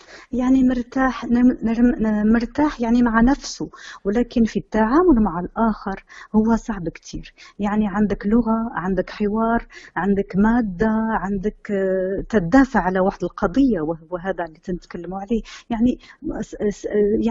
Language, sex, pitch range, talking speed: Arabic, female, 200-260 Hz, 105 wpm